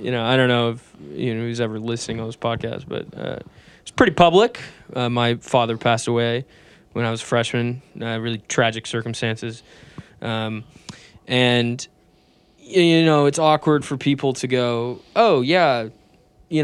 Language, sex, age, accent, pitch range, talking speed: English, male, 20-39, American, 115-140 Hz, 165 wpm